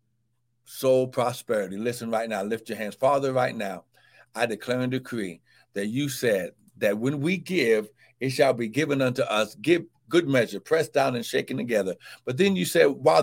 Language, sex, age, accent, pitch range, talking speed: English, male, 60-79, American, 130-190 Hz, 185 wpm